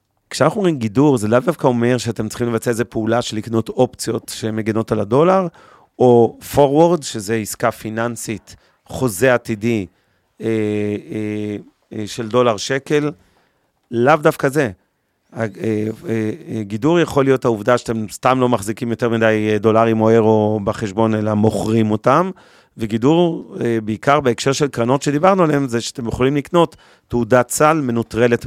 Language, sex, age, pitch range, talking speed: Hebrew, male, 40-59, 110-130 Hz, 130 wpm